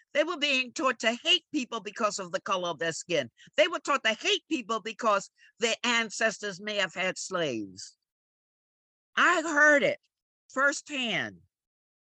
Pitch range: 200-285 Hz